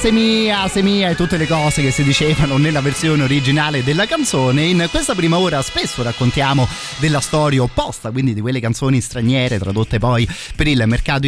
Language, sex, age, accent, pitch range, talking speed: Italian, male, 30-49, native, 110-135 Hz, 175 wpm